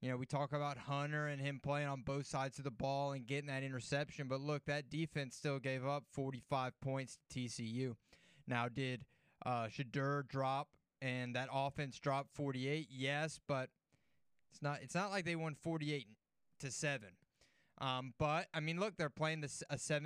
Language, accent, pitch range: English, American, 130-155 Hz